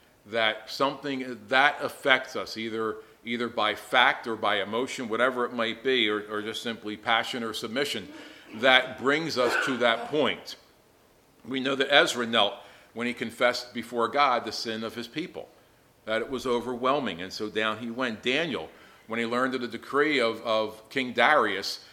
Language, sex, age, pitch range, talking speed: English, male, 50-69, 110-130 Hz, 175 wpm